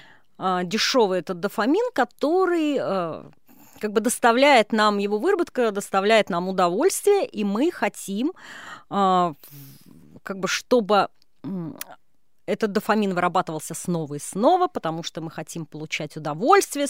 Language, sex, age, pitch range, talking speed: Russian, female, 30-49, 185-265 Hz, 105 wpm